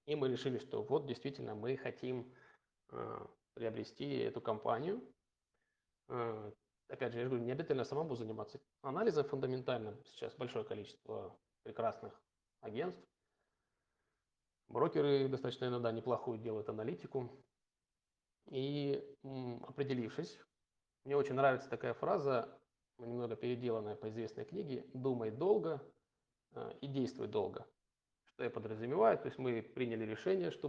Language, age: Russian, 20-39